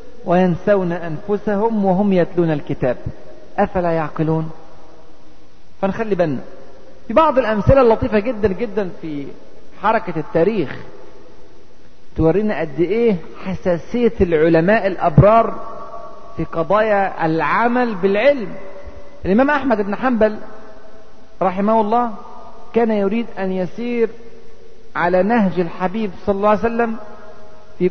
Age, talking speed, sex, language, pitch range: 40-59, 95 wpm, male, Arabic, 175-230 Hz